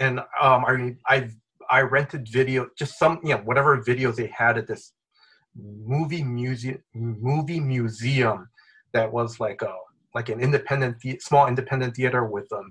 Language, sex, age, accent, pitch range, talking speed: English, male, 30-49, American, 120-145 Hz, 160 wpm